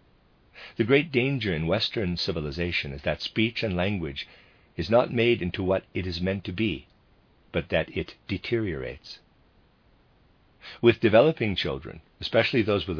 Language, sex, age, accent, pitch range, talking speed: English, male, 50-69, American, 85-110 Hz, 145 wpm